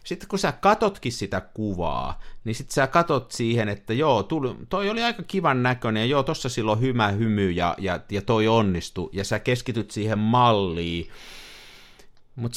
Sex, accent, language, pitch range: male, native, Finnish, 100-140 Hz